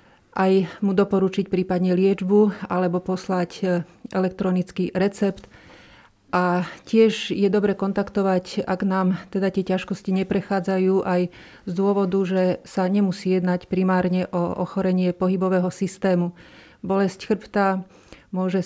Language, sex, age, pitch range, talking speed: Slovak, female, 40-59, 180-195 Hz, 115 wpm